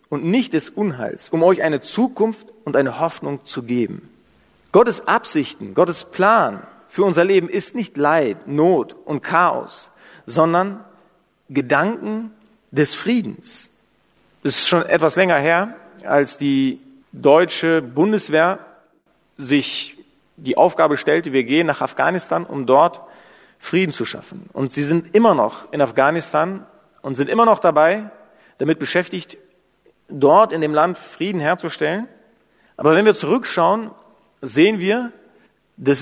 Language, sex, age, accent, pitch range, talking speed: German, male, 40-59, German, 145-215 Hz, 135 wpm